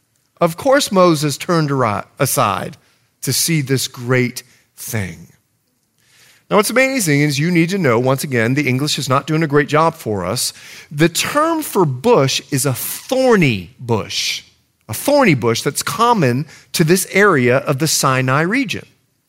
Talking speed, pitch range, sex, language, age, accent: 155 wpm, 125-195 Hz, male, English, 40-59, American